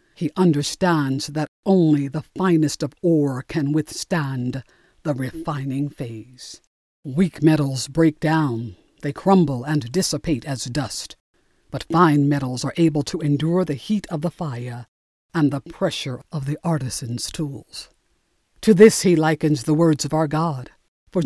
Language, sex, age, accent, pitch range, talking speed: English, female, 60-79, American, 145-185 Hz, 145 wpm